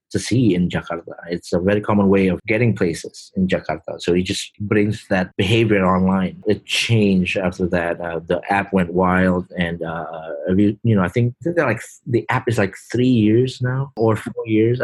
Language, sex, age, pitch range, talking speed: English, male, 30-49, 95-110 Hz, 200 wpm